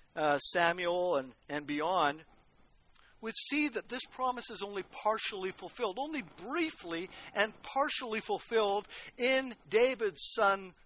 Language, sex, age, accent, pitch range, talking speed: English, male, 60-79, American, 180-230 Hz, 120 wpm